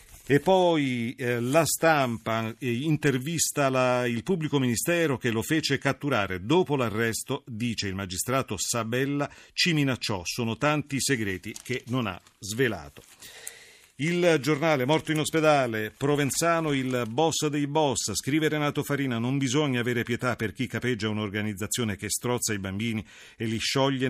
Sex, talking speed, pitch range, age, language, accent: male, 145 wpm, 110-145 Hz, 40-59, Italian, native